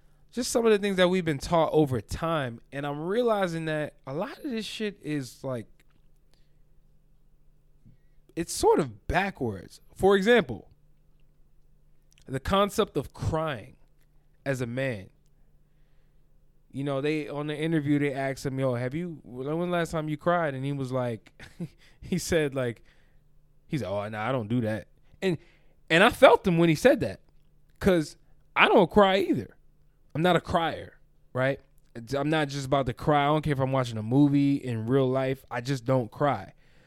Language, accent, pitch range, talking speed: English, American, 125-160 Hz, 175 wpm